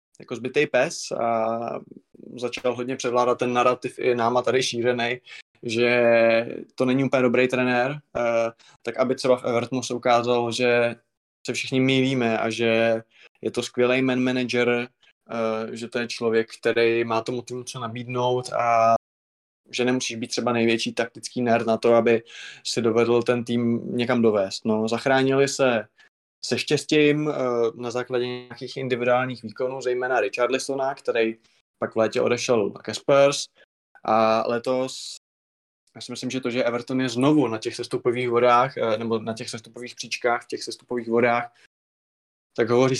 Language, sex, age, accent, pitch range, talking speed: Czech, male, 20-39, native, 115-130 Hz, 150 wpm